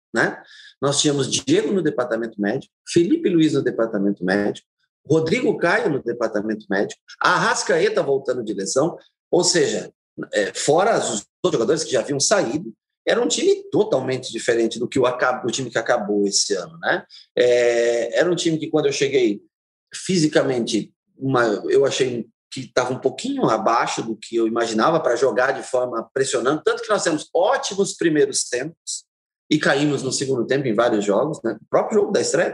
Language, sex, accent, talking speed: Portuguese, male, Brazilian, 175 wpm